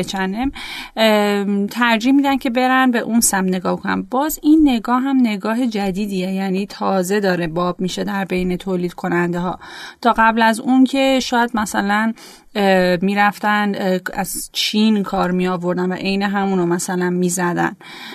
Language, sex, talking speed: Persian, female, 140 wpm